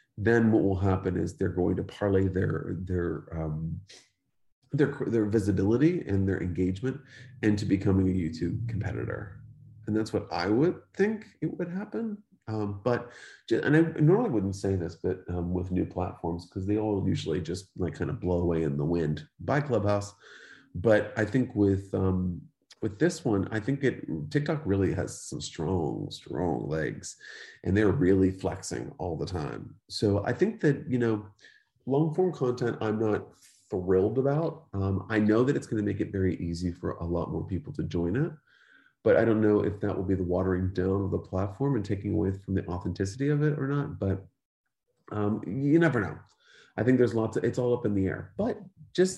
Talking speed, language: 195 wpm, English